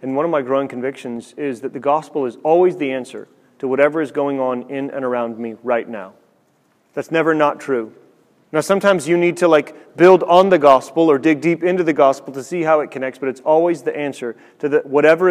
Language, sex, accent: English, male, American